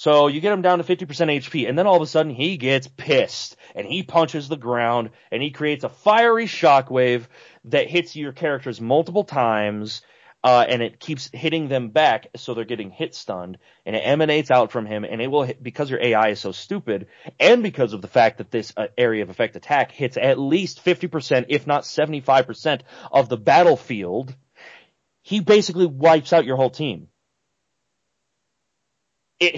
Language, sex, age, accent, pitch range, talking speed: English, male, 30-49, American, 120-160 Hz, 185 wpm